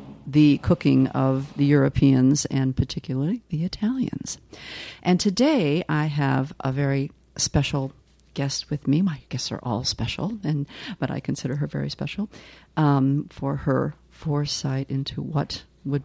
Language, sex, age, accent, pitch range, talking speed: English, female, 50-69, American, 135-165 Hz, 140 wpm